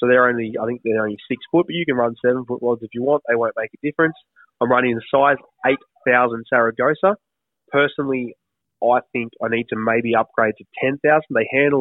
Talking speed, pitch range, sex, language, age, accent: 215 wpm, 110-130 Hz, male, English, 20-39, Australian